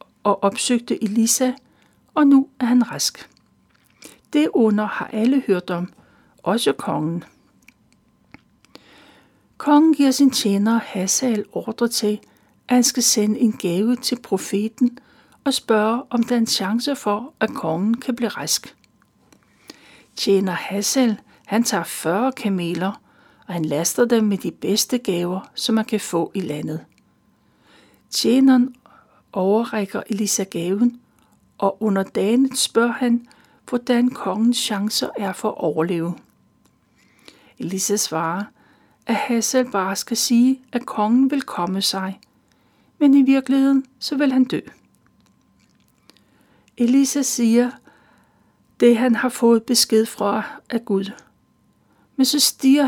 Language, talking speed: Danish, 125 wpm